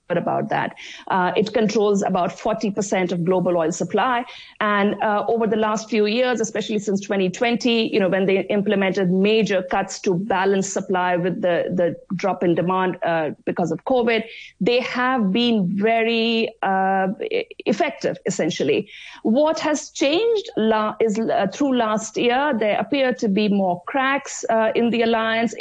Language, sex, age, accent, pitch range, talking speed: English, female, 50-69, Indian, 190-245 Hz, 160 wpm